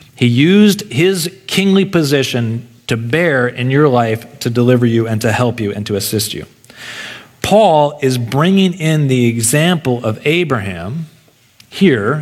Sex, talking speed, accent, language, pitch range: male, 145 wpm, American, English, 120-155 Hz